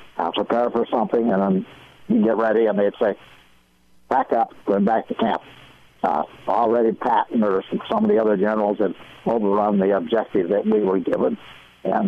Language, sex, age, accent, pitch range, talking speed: English, male, 60-79, American, 100-120 Hz, 185 wpm